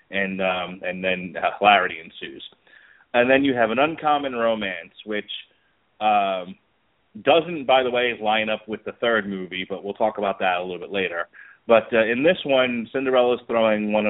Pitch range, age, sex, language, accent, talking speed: 100-125 Hz, 30-49, male, English, American, 185 wpm